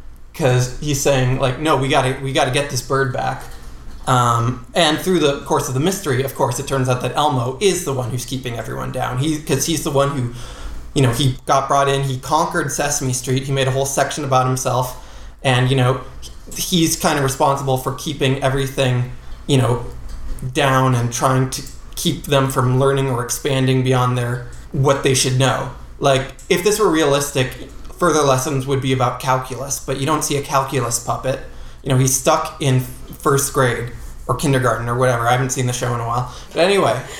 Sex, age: male, 20-39